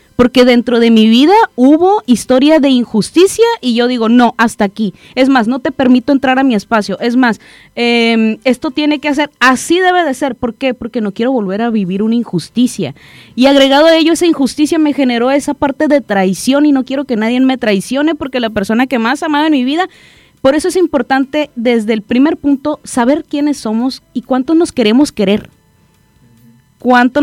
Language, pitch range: Spanish, 225-290 Hz